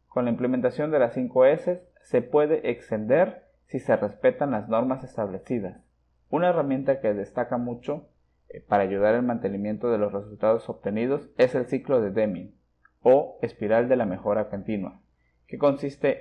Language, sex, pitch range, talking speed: Spanish, male, 100-140 Hz, 150 wpm